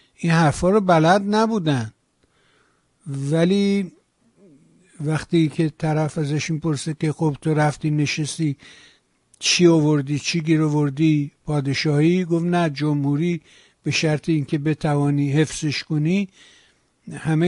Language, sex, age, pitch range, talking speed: Persian, male, 60-79, 150-180 Hz, 105 wpm